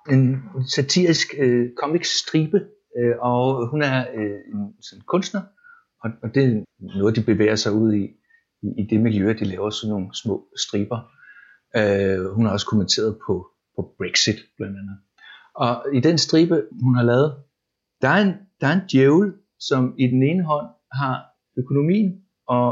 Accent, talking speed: native, 155 wpm